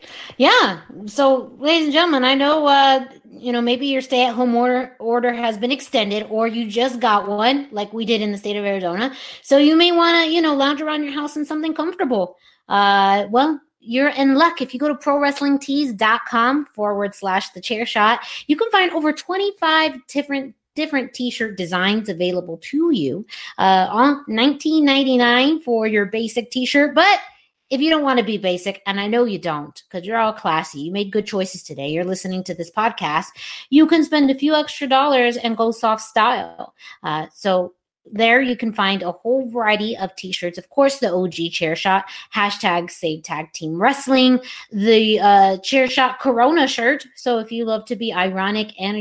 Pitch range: 185-270 Hz